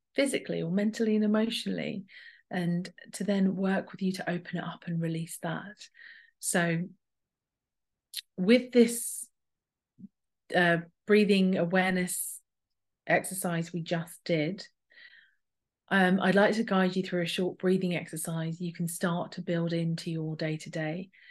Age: 40-59